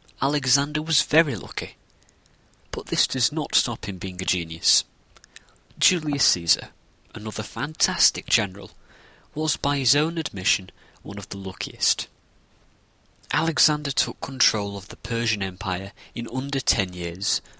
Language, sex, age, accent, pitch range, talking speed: English, male, 30-49, British, 95-145 Hz, 130 wpm